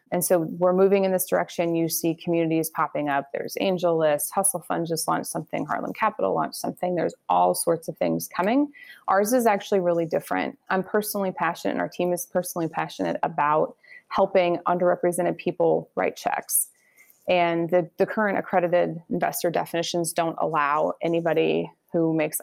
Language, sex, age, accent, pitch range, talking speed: English, female, 20-39, American, 165-190 Hz, 165 wpm